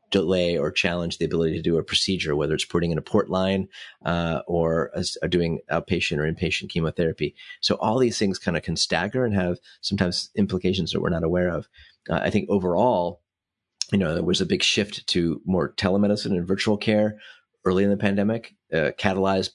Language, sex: English, male